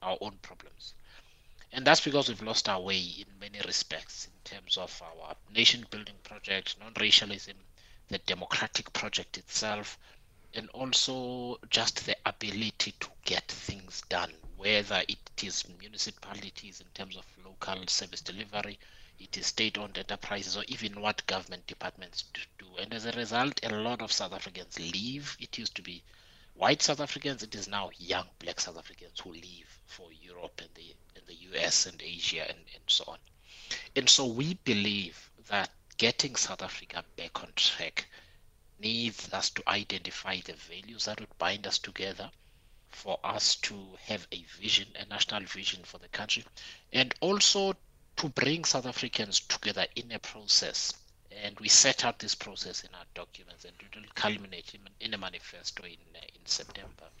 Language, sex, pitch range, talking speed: English, male, 95-115 Hz, 165 wpm